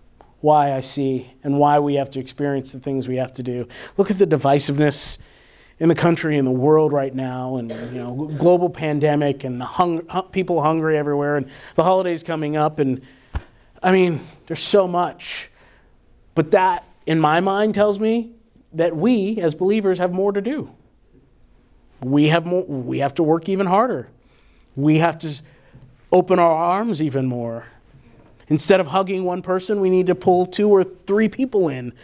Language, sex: English, male